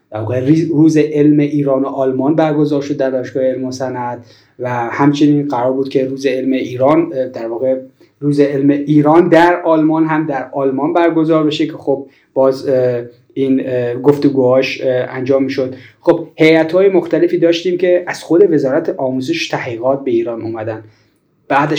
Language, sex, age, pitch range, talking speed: Persian, male, 30-49, 135-160 Hz, 150 wpm